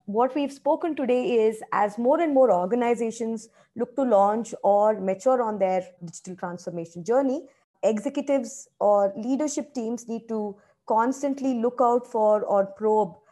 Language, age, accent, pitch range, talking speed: English, 20-39, Indian, 185-245 Hz, 145 wpm